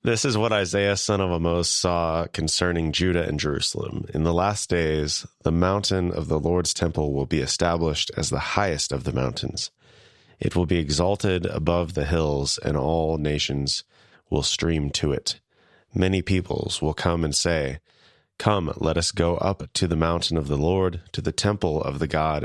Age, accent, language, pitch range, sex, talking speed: 30-49, American, English, 75-90 Hz, male, 180 wpm